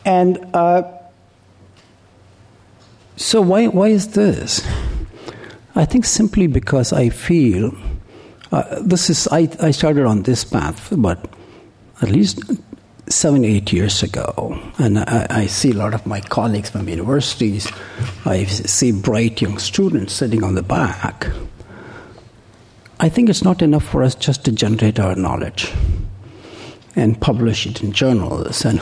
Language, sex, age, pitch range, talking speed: English, male, 60-79, 105-145 Hz, 140 wpm